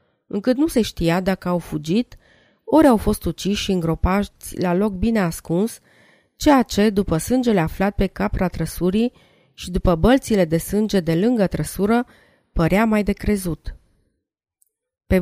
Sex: female